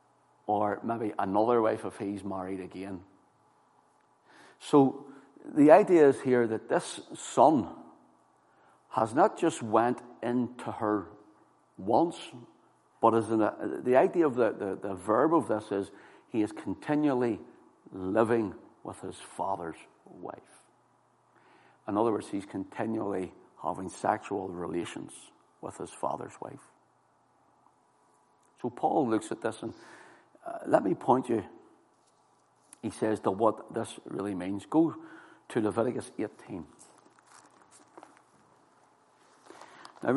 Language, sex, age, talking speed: English, male, 60-79, 120 wpm